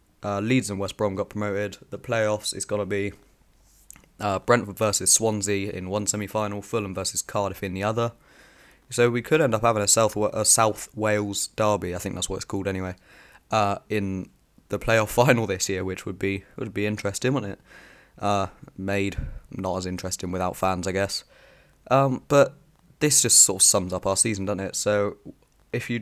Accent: British